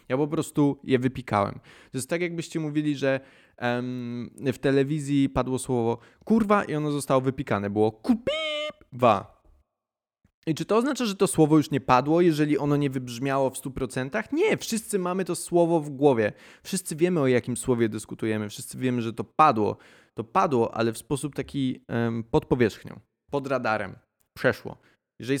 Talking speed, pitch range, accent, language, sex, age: 165 wpm, 120-150 Hz, native, Polish, male, 20-39